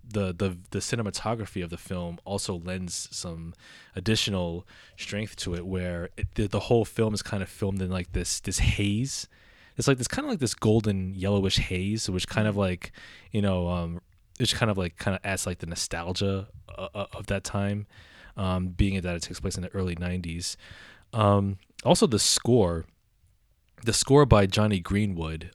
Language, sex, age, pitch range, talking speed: English, male, 20-39, 90-105 Hz, 185 wpm